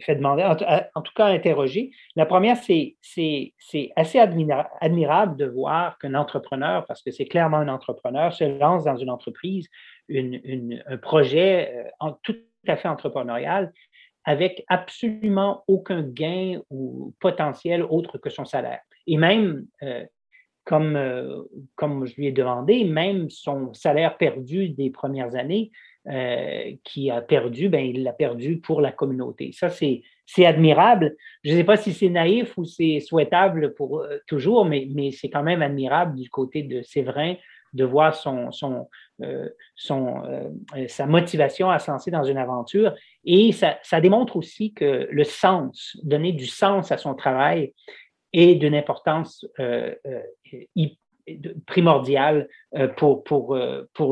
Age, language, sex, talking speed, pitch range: 40-59, French, male, 150 wpm, 140-195 Hz